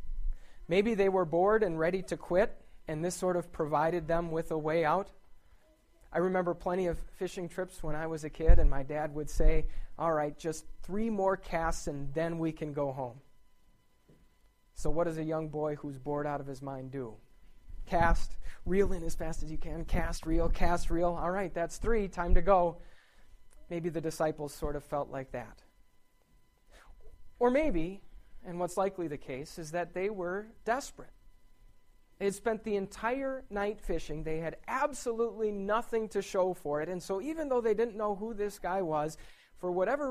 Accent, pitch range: American, 150-195 Hz